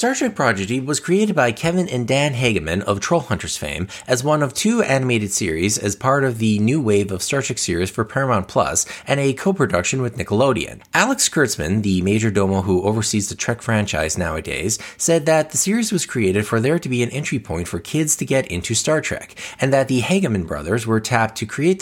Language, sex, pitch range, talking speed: English, male, 100-140 Hz, 210 wpm